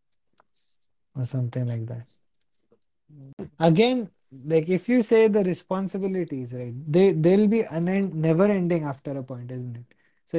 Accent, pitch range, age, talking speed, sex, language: native, 130-170 Hz, 20-39, 145 wpm, male, Hindi